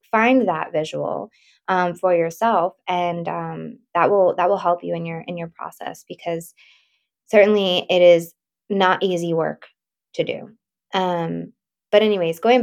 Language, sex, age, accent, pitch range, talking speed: English, female, 20-39, American, 165-200 Hz, 150 wpm